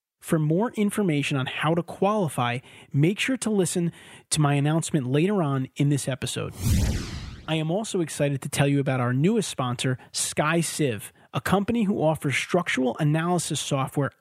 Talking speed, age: 160 wpm, 30-49